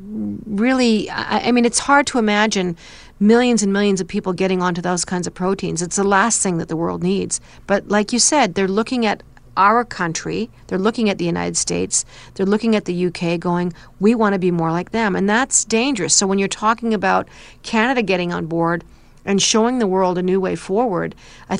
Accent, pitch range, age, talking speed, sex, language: American, 180-230 Hz, 40-59, 210 wpm, female, English